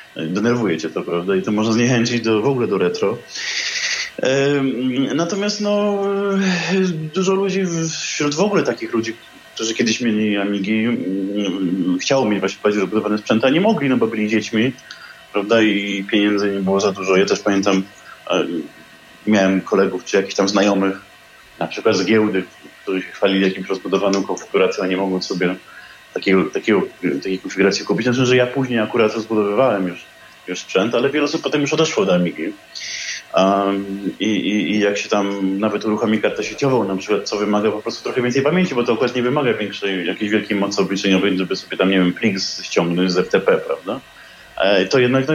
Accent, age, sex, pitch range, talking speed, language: native, 20-39, male, 95-130 Hz, 180 wpm, Polish